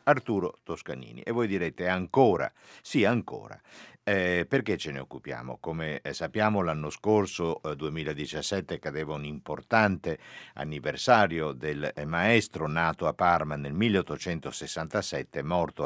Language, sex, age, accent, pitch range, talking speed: Italian, male, 50-69, native, 75-95 Hz, 115 wpm